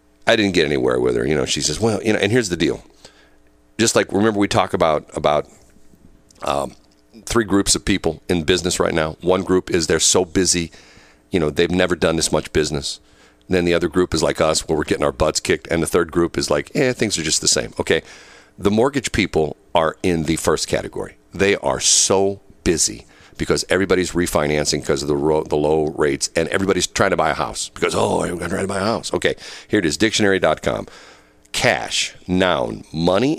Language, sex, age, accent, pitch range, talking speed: English, male, 50-69, American, 75-105 Hz, 210 wpm